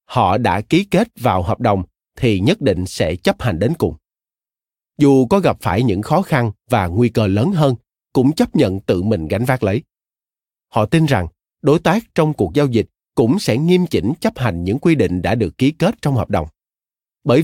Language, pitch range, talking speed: Vietnamese, 100-150 Hz, 210 wpm